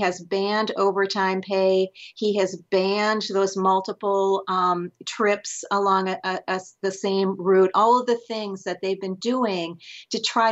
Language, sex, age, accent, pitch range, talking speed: English, female, 40-59, American, 180-210 Hz, 160 wpm